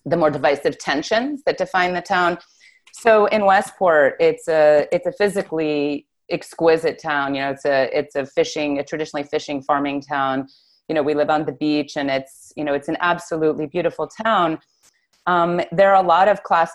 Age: 30-49